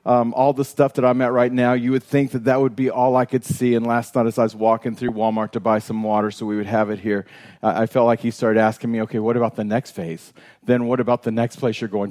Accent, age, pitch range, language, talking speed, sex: American, 40-59, 110-135 Hz, English, 300 wpm, male